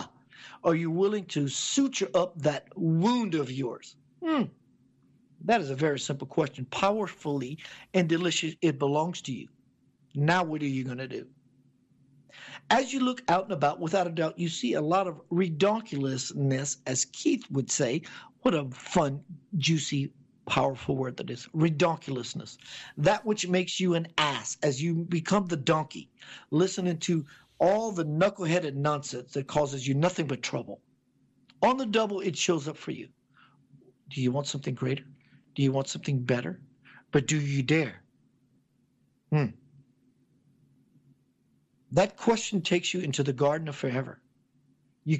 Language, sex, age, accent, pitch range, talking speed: English, male, 50-69, American, 135-175 Hz, 155 wpm